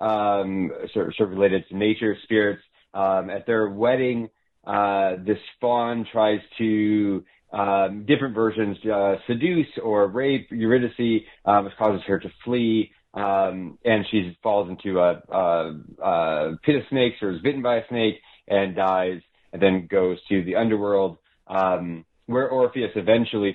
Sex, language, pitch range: male, English, 95-115 Hz